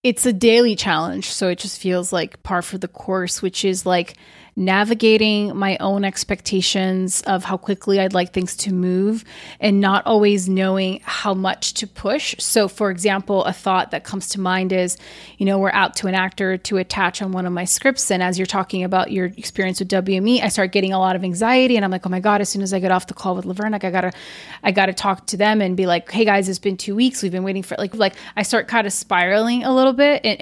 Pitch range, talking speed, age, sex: 190-225 Hz, 245 wpm, 30-49, female